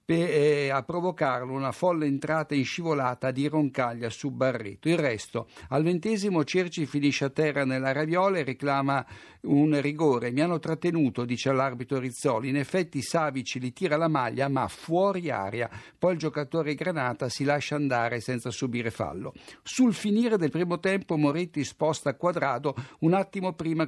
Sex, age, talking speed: male, 60-79, 160 wpm